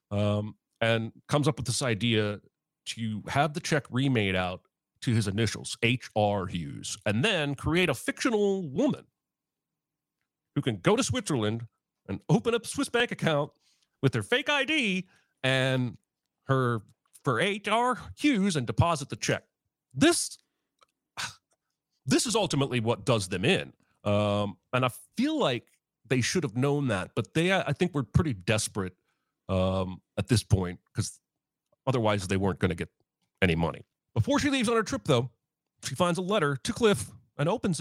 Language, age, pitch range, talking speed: English, 40-59, 110-165 Hz, 165 wpm